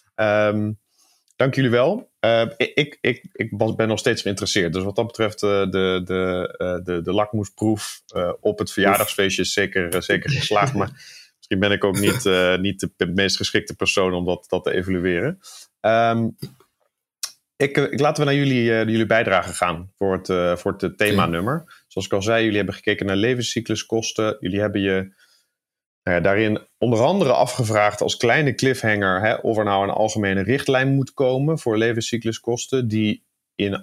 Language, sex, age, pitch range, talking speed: Dutch, male, 30-49, 95-115 Hz, 155 wpm